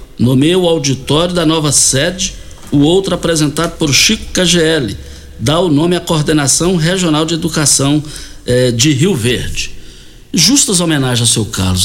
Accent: Brazilian